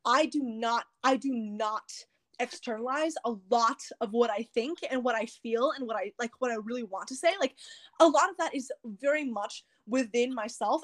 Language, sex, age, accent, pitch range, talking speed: English, female, 20-39, American, 240-315 Hz, 205 wpm